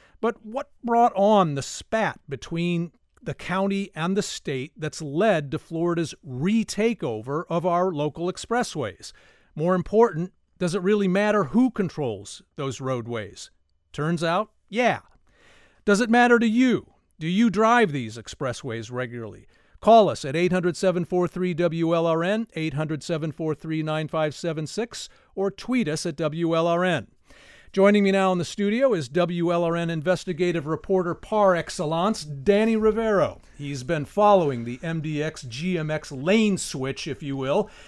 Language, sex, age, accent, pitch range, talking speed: English, male, 50-69, American, 155-200 Hz, 135 wpm